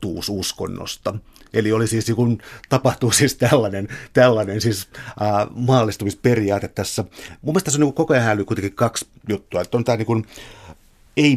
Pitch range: 105-130 Hz